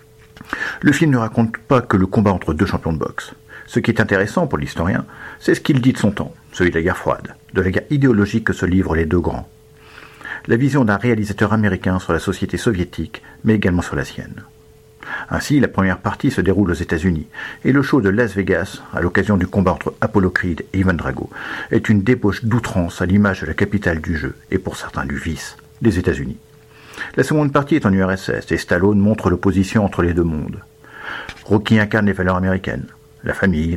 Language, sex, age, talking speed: French, male, 50-69, 215 wpm